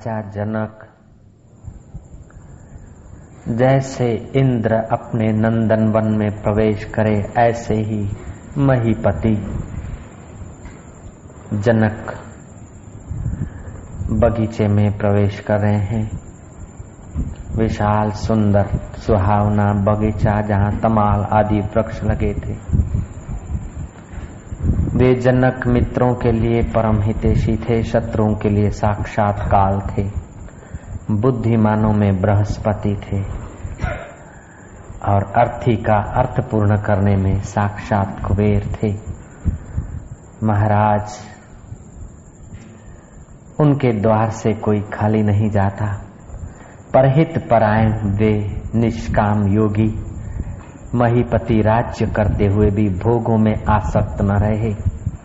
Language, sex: Hindi, male